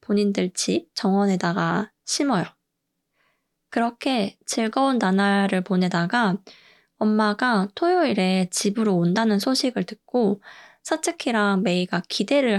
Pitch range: 195-245 Hz